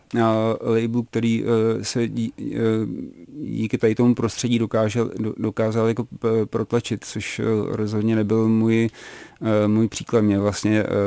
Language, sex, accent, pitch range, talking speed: Czech, male, native, 105-115 Hz, 120 wpm